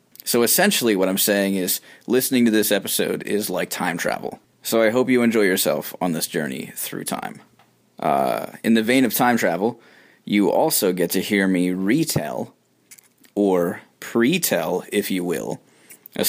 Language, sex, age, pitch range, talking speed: English, male, 20-39, 95-120 Hz, 165 wpm